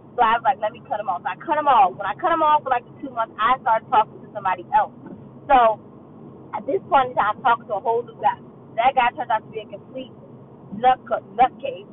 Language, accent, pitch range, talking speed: English, American, 195-260 Hz, 260 wpm